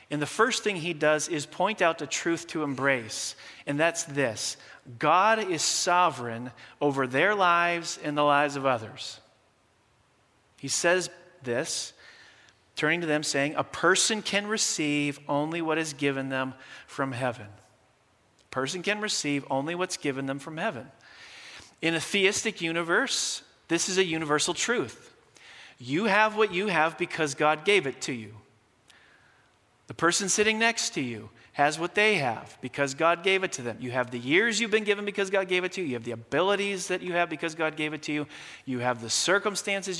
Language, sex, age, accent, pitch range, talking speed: English, male, 40-59, American, 135-180 Hz, 180 wpm